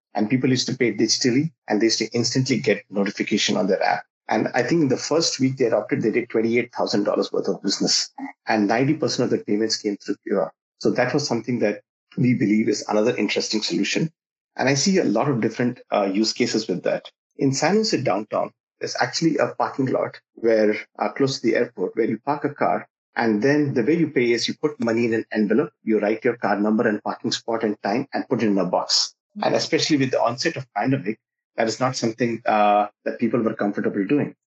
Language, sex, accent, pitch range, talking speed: English, male, Indian, 110-135 Hz, 225 wpm